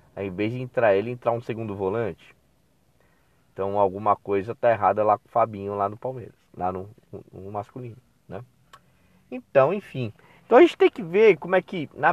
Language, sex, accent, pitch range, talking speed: Portuguese, male, Brazilian, 100-145 Hz, 200 wpm